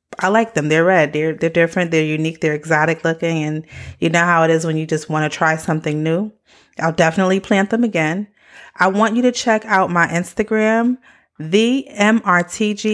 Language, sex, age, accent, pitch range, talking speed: English, female, 30-49, American, 160-205 Hz, 195 wpm